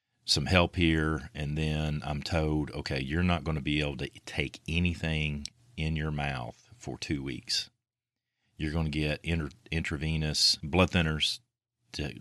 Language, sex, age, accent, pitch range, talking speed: English, male, 40-59, American, 75-90 Hz, 150 wpm